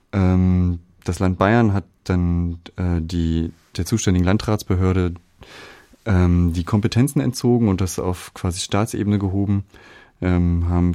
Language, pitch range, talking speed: German, 85-100 Hz, 105 wpm